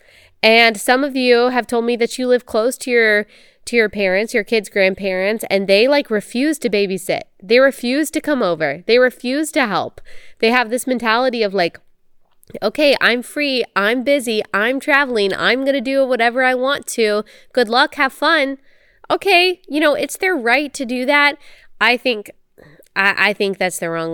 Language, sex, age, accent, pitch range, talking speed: English, female, 20-39, American, 185-255 Hz, 185 wpm